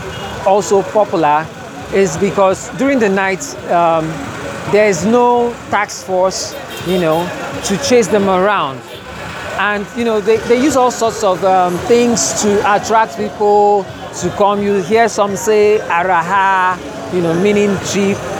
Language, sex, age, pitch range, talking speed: English, male, 40-59, 180-220 Hz, 145 wpm